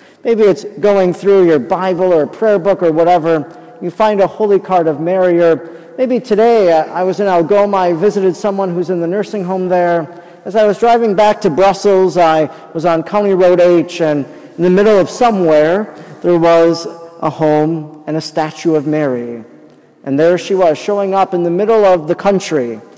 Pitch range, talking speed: 175-215 Hz, 195 wpm